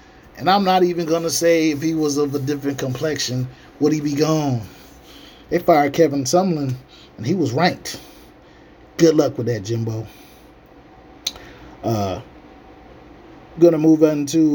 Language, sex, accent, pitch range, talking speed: English, male, American, 145-170 Hz, 150 wpm